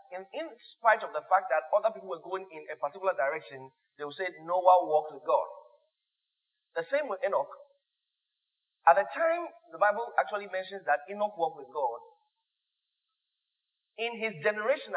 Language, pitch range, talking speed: English, 165-260 Hz, 165 wpm